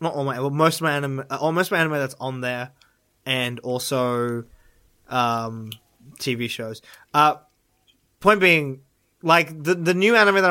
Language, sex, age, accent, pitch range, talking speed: English, male, 20-39, Australian, 125-170 Hz, 165 wpm